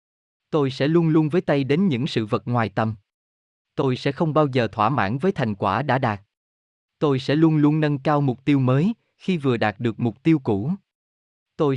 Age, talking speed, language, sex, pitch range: 20-39, 210 wpm, Vietnamese, male, 110-155 Hz